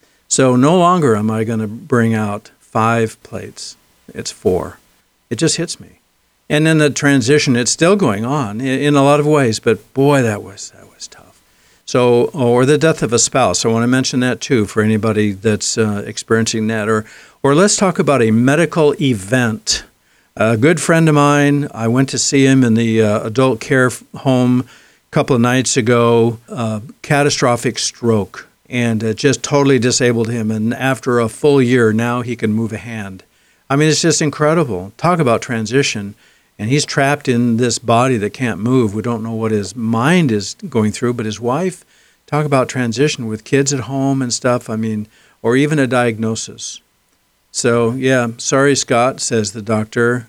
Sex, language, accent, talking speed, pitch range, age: male, English, American, 185 wpm, 110-140 Hz, 60-79